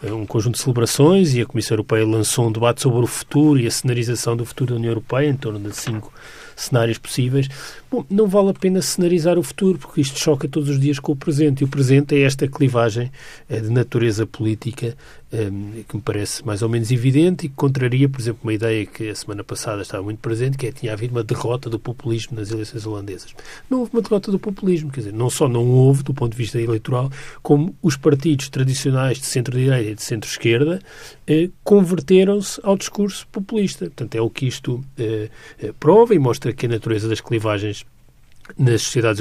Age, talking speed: 40-59, 205 wpm